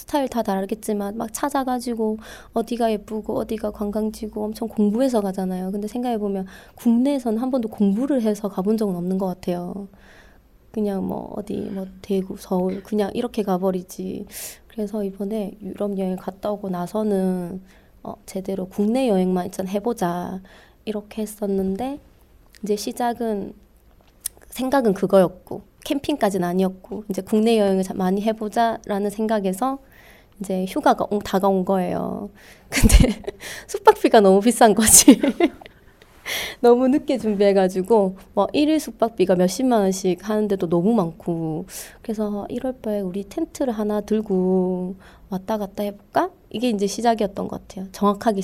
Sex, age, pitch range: female, 20-39, 190-235 Hz